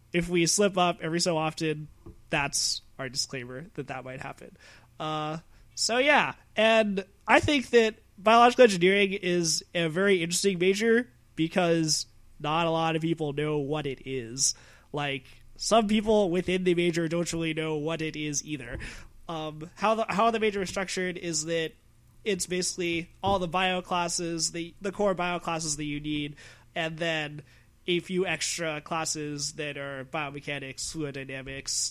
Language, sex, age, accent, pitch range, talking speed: English, male, 20-39, American, 145-185 Hz, 160 wpm